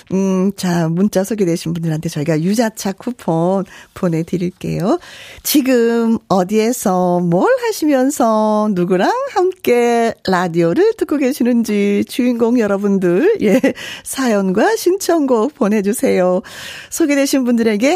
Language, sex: Korean, female